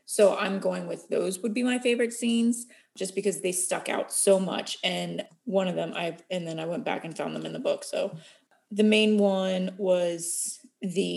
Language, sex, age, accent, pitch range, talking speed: English, female, 20-39, American, 185-225 Hz, 210 wpm